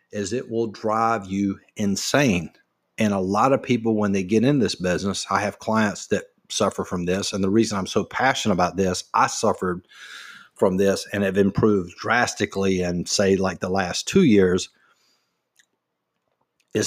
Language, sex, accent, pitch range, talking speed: English, male, American, 95-115 Hz, 170 wpm